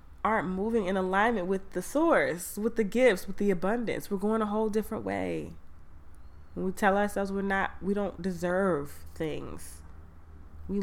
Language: English